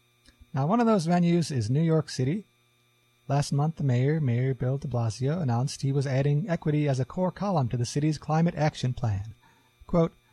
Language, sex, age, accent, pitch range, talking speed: English, male, 30-49, American, 120-160 Hz, 190 wpm